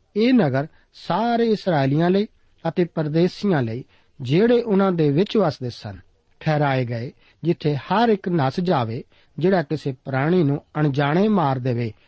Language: Punjabi